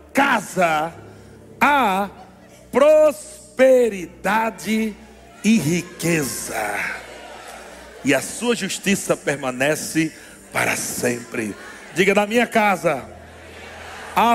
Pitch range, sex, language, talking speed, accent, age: 180-250 Hz, male, Portuguese, 70 wpm, Brazilian, 60-79